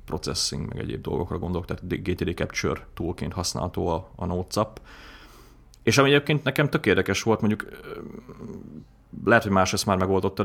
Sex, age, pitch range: male, 30-49, 85-95 Hz